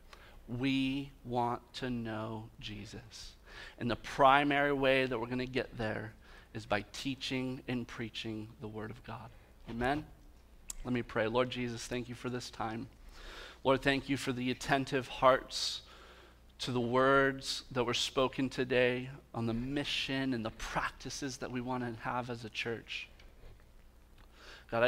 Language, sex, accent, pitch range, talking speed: English, male, American, 110-130 Hz, 155 wpm